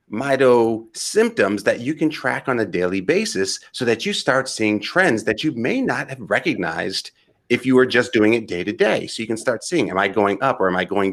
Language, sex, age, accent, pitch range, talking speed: English, male, 30-49, American, 105-140 Hz, 235 wpm